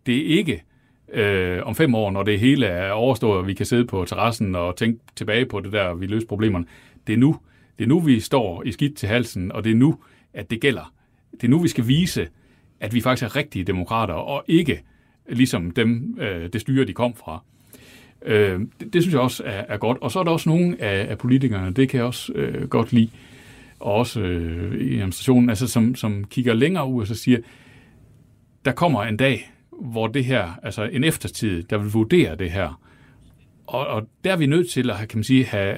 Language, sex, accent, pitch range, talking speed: Danish, male, native, 105-130 Hz, 220 wpm